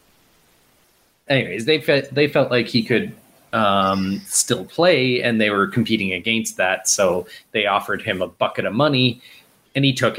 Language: English